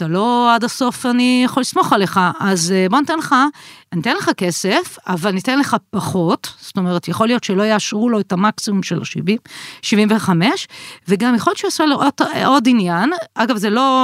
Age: 40-59